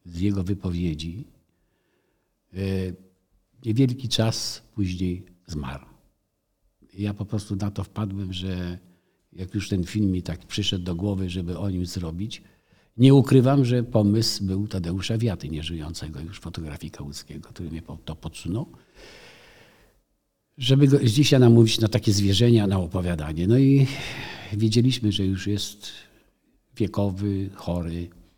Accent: native